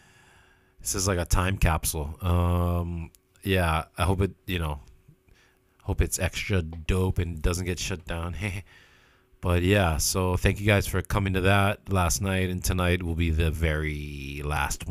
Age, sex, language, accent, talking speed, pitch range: 30-49, male, English, American, 165 wpm, 80-95 Hz